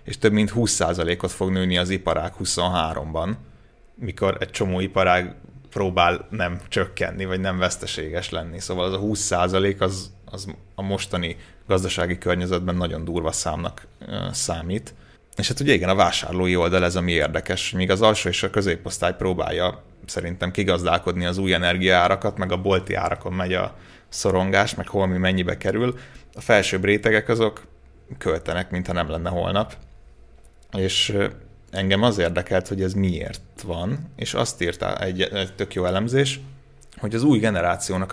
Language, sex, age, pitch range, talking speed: Hungarian, male, 30-49, 90-100 Hz, 155 wpm